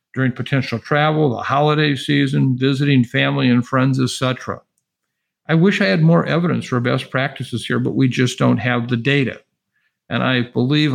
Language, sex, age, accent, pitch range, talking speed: English, male, 50-69, American, 125-150 Hz, 175 wpm